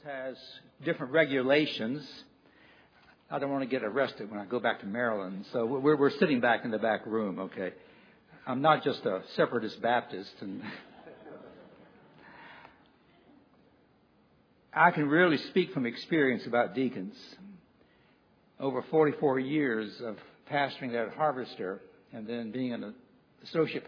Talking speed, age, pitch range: 130 wpm, 60-79, 125-155 Hz